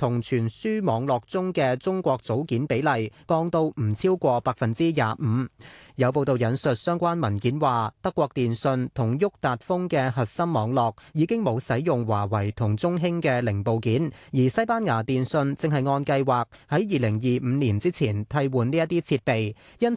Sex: male